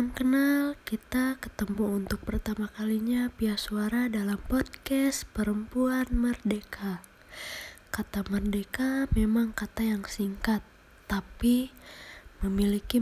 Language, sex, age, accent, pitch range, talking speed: Indonesian, female, 20-39, native, 195-225 Hz, 90 wpm